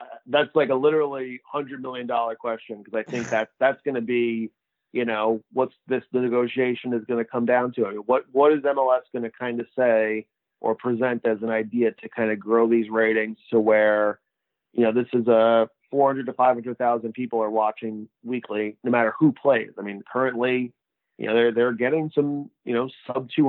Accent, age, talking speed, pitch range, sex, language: American, 30-49, 205 wpm, 115-130 Hz, male, English